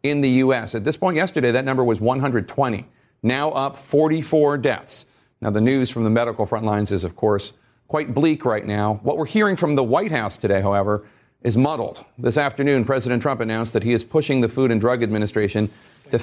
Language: English